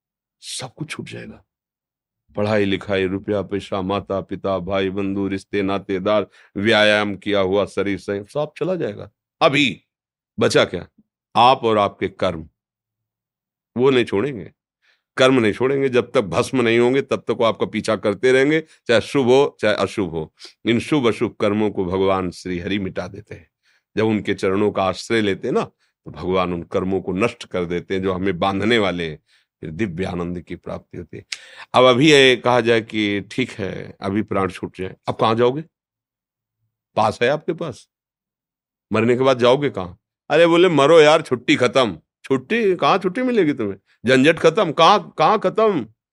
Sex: male